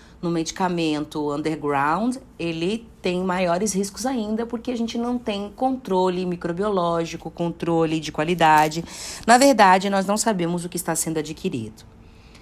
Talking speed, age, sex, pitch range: 135 wpm, 40-59, female, 160-205 Hz